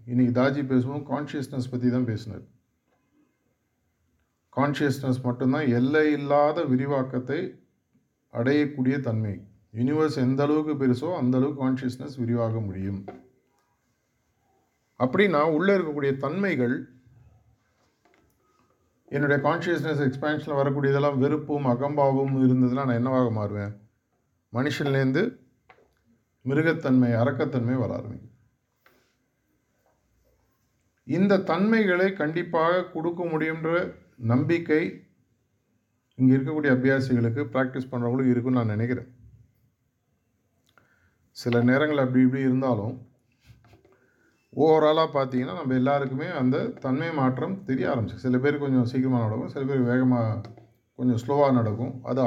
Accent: native